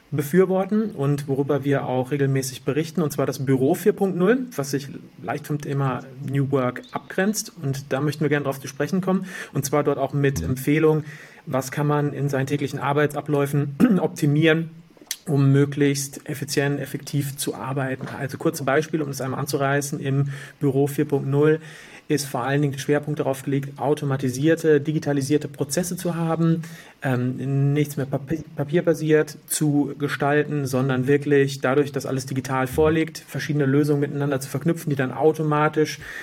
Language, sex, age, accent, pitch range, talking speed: German, male, 30-49, German, 135-155 Hz, 155 wpm